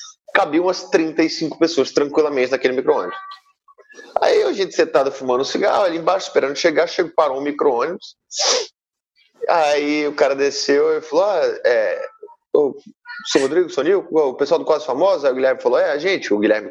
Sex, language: male, Portuguese